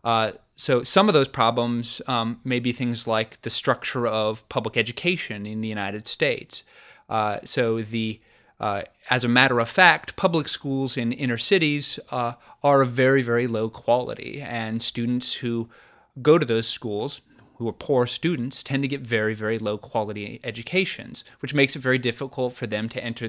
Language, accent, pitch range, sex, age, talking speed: English, American, 115-135 Hz, male, 30-49, 180 wpm